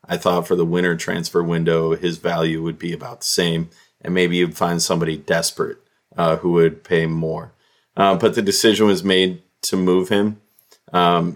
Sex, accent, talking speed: male, American, 185 wpm